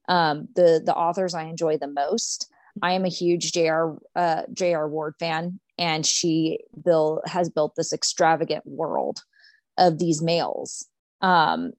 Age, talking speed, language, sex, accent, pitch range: 30-49, 150 wpm, English, female, American, 165-195 Hz